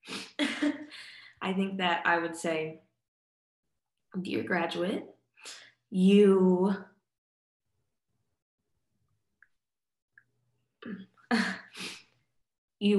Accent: American